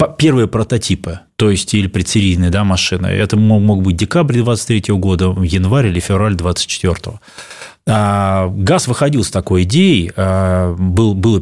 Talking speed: 135 wpm